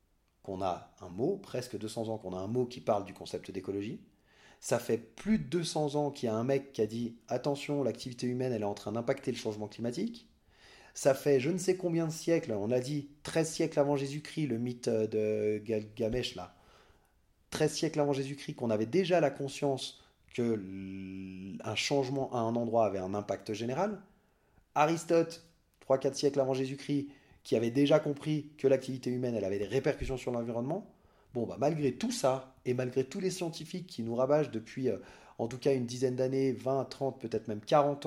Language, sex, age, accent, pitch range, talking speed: French, male, 30-49, French, 110-145 Hz, 200 wpm